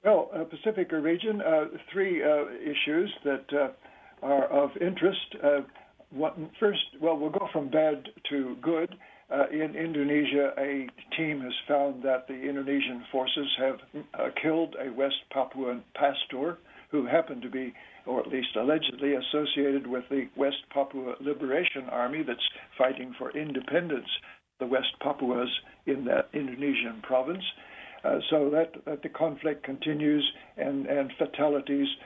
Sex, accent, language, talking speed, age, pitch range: male, American, English, 145 wpm, 60-79, 135-160 Hz